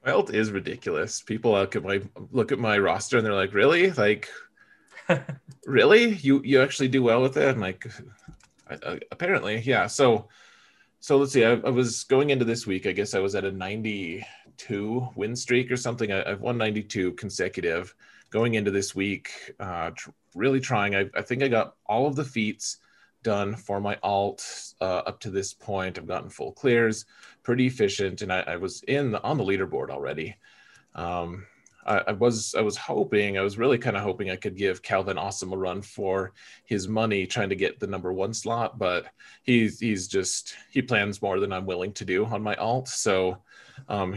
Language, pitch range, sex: English, 100-125 Hz, male